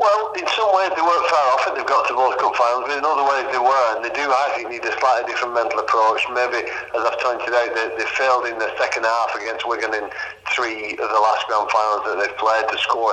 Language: English